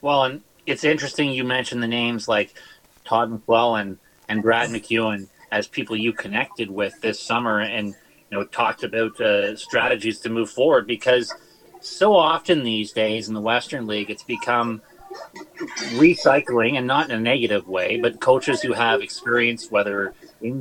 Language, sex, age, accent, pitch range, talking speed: English, male, 30-49, American, 115-140 Hz, 165 wpm